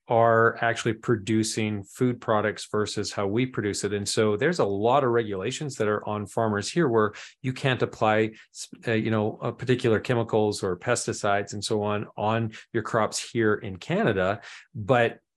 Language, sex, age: English, male, 40-59